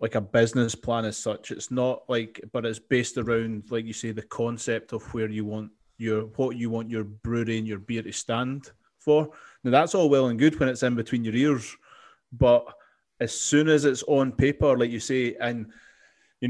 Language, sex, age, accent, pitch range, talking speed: English, male, 20-39, British, 110-125 Hz, 210 wpm